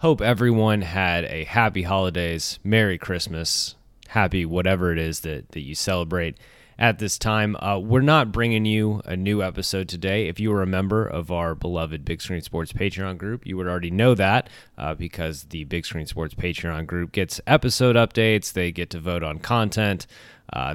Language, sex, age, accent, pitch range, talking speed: English, male, 30-49, American, 85-105 Hz, 185 wpm